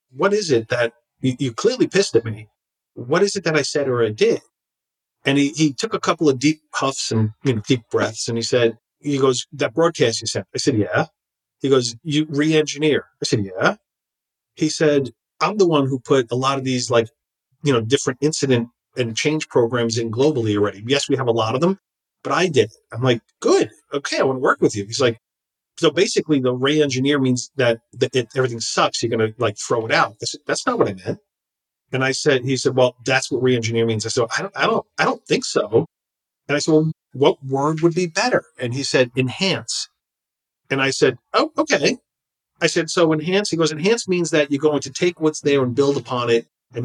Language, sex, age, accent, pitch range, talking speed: English, male, 40-59, American, 120-155 Hz, 230 wpm